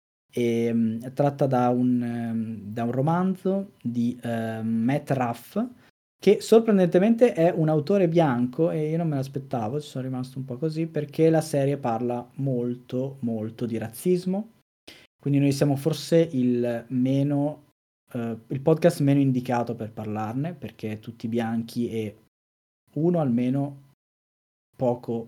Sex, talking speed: male, 135 wpm